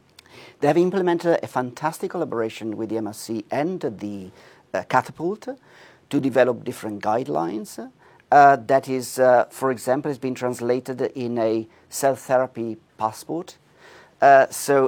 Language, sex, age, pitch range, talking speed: English, male, 50-69, 115-140 Hz, 135 wpm